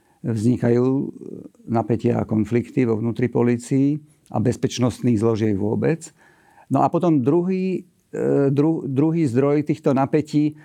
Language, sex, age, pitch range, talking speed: Slovak, male, 50-69, 115-150 Hz, 115 wpm